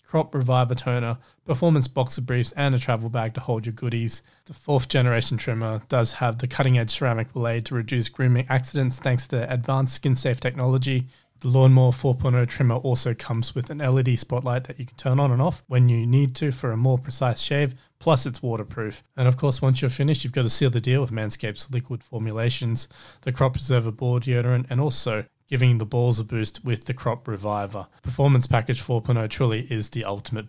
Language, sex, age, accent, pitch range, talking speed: English, male, 20-39, Australian, 115-135 Hz, 205 wpm